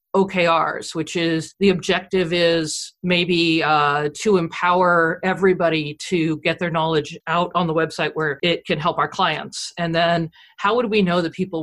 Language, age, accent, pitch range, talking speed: English, 40-59, American, 160-205 Hz, 170 wpm